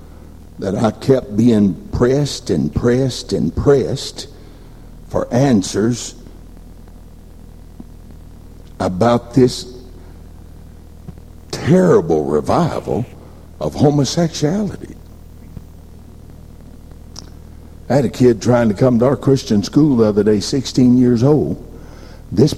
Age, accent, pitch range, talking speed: 60-79, American, 80-120 Hz, 95 wpm